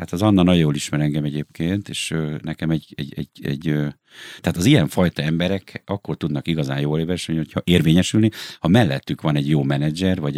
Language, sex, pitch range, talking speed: Hungarian, male, 75-90 Hz, 190 wpm